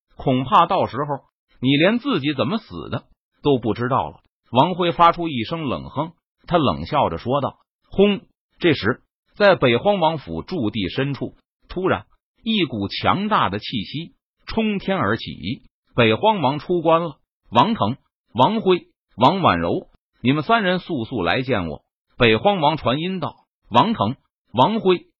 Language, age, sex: Chinese, 50-69, male